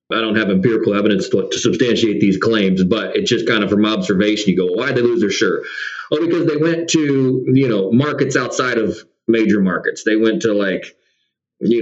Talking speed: 210 wpm